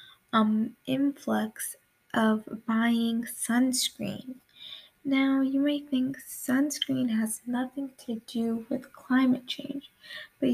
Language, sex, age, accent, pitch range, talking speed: English, female, 10-29, American, 225-275 Hz, 100 wpm